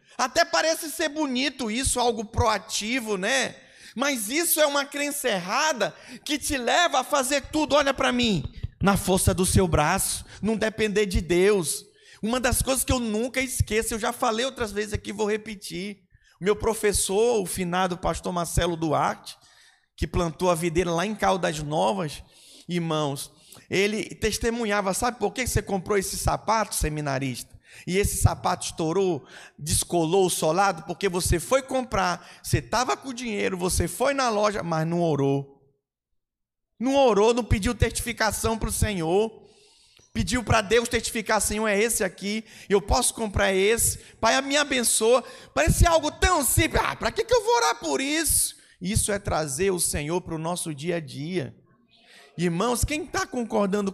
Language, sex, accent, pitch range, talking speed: Portuguese, male, Brazilian, 180-250 Hz, 165 wpm